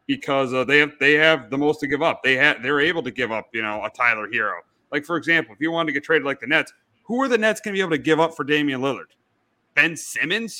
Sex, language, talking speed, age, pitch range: male, English, 285 wpm, 30-49, 135-165 Hz